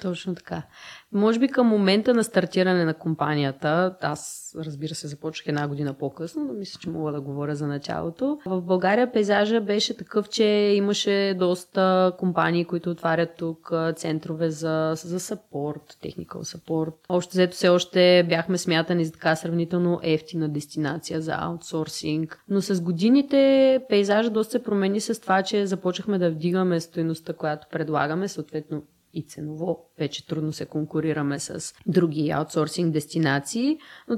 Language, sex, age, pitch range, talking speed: Bulgarian, female, 20-39, 160-190 Hz, 145 wpm